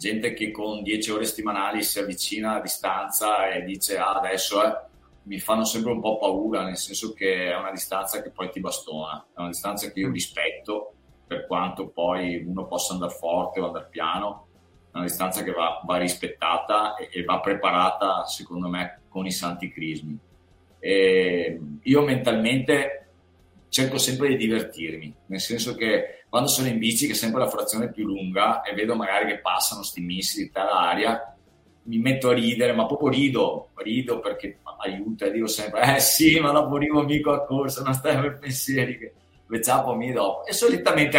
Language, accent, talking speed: Italian, native, 190 wpm